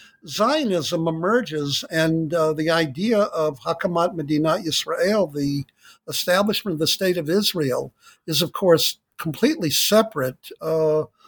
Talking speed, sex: 120 wpm, male